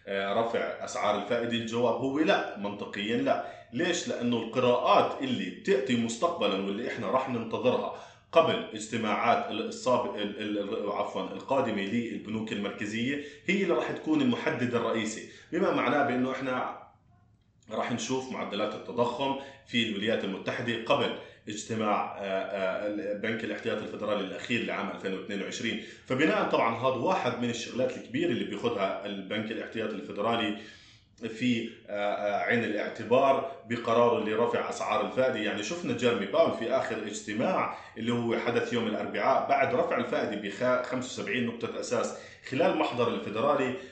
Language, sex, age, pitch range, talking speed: Arabic, male, 30-49, 105-125 Hz, 125 wpm